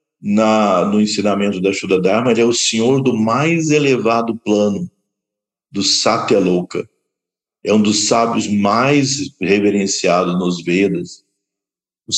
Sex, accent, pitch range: male, Brazilian, 100-130 Hz